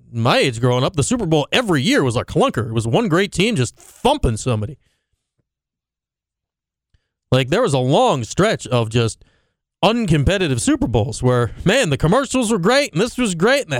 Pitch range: 115-195 Hz